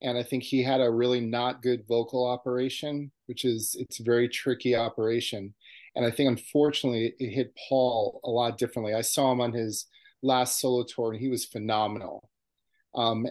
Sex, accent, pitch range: male, American, 115-135 Hz